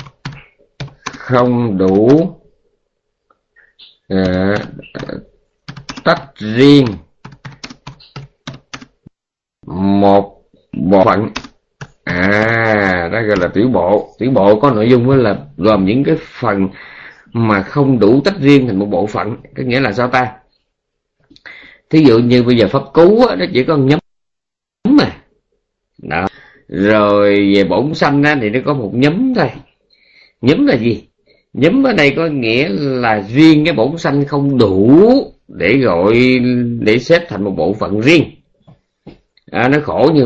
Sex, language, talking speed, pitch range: male, Vietnamese, 140 wpm, 100-140 Hz